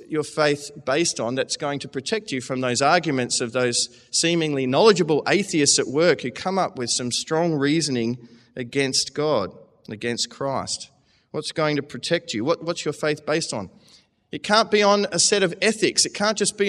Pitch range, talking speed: 125-180 Hz, 190 wpm